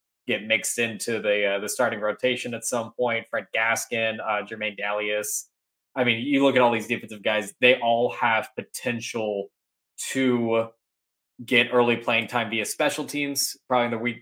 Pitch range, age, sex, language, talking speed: 105-120 Hz, 20-39, male, English, 175 wpm